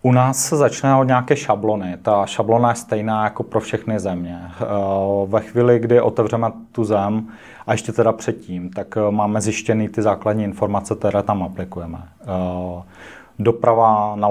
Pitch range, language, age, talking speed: 95-110 Hz, Czech, 30-49, 150 wpm